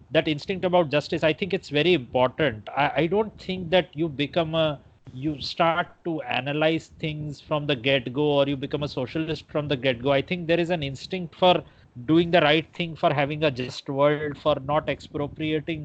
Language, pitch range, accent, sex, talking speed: English, 130-160 Hz, Indian, male, 195 wpm